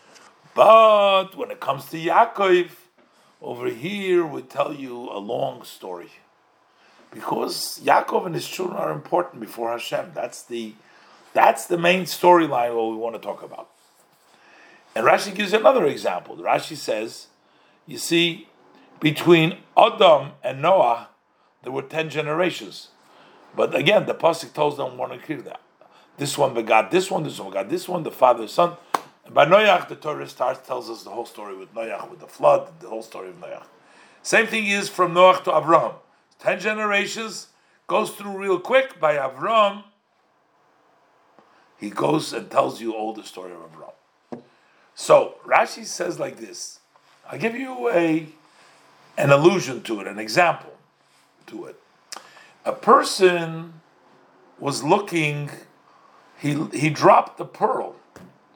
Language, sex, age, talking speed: English, male, 50-69, 150 wpm